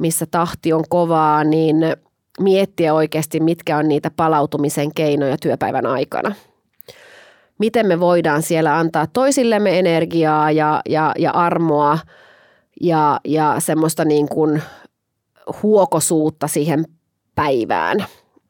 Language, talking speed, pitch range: Finnish, 105 wpm, 155-175 Hz